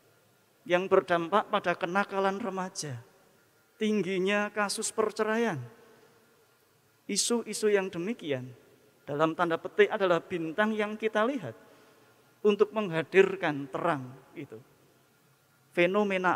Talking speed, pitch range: 90 wpm, 140-190 Hz